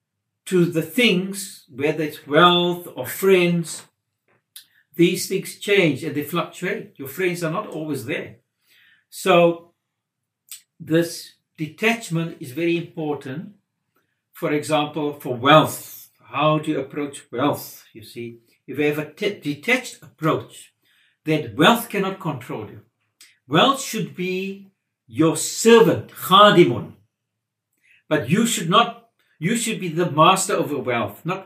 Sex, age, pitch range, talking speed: male, 60-79, 145-185 Hz, 130 wpm